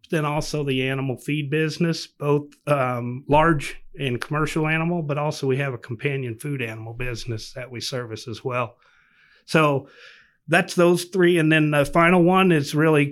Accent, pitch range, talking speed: American, 130-150 Hz, 170 wpm